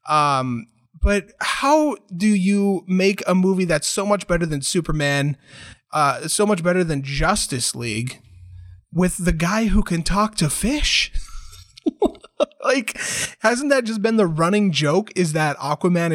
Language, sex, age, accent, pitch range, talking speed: English, male, 20-39, American, 140-175 Hz, 150 wpm